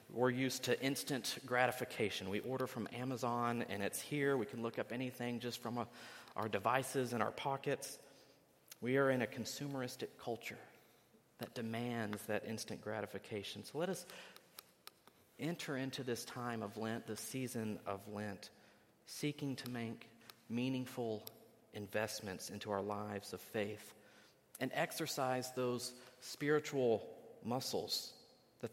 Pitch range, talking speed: 110-130 Hz, 135 wpm